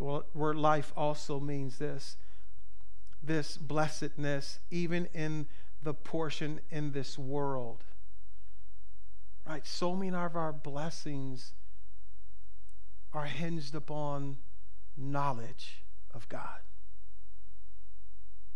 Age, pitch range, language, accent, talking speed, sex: 50-69, 100-165 Hz, English, American, 85 wpm, male